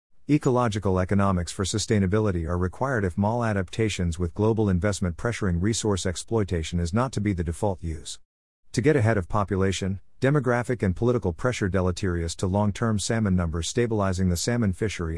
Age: 50-69